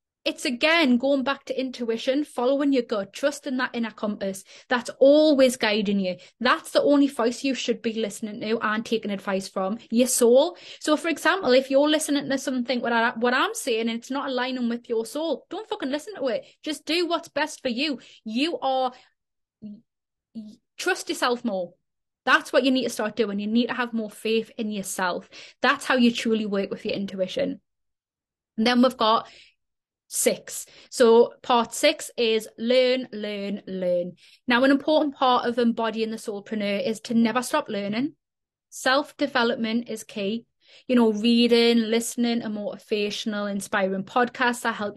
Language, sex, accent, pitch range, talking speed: English, female, British, 220-275 Hz, 170 wpm